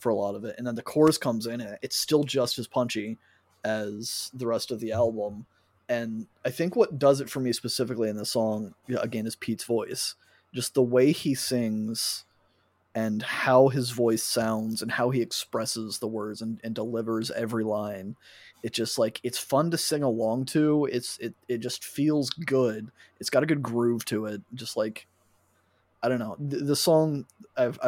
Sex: male